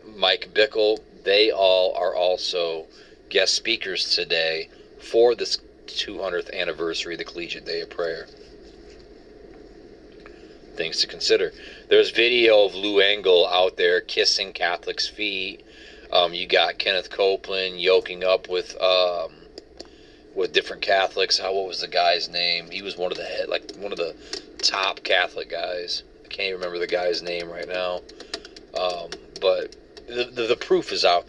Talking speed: 155 wpm